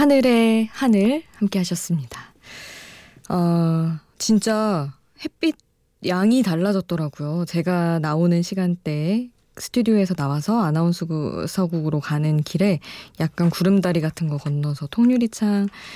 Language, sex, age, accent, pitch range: Korean, female, 20-39, native, 155-200 Hz